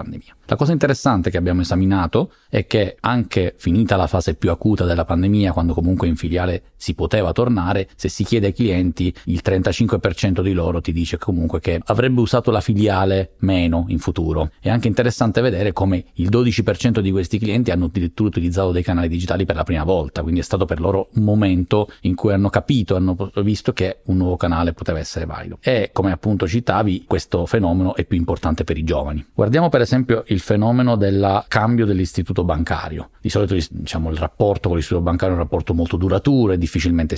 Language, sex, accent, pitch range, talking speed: Italian, male, native, 85-105 Hz, 195 wpm